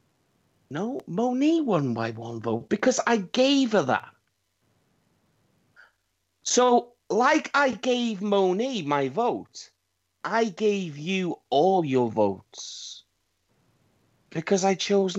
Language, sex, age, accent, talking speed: English, male, 40-59, British, 105 wpm